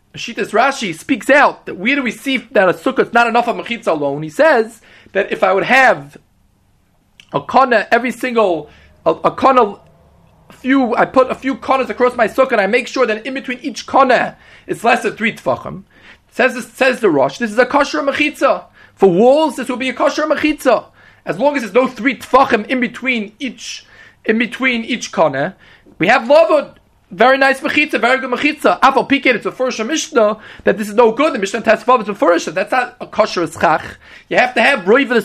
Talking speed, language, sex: 205 wpm, English, male